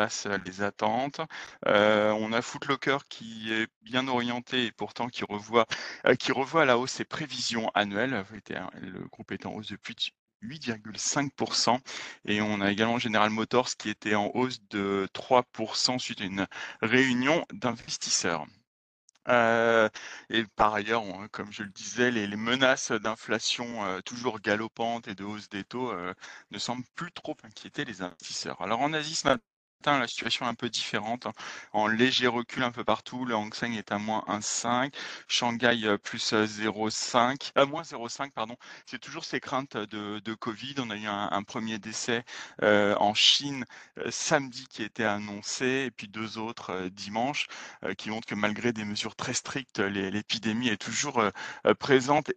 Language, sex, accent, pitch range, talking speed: French, male, French, 105-125 Hz, 175 wpm